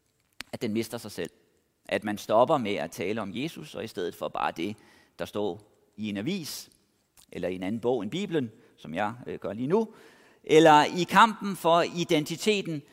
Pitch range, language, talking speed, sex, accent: 125-180 Hz, Danish, 190 wpm, male, native